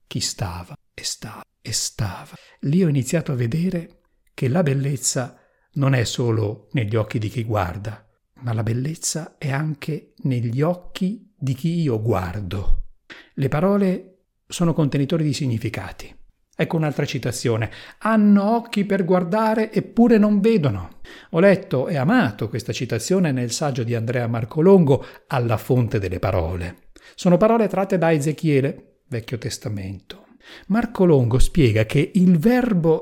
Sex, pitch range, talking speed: male, 120-180 Hz, 140 wpm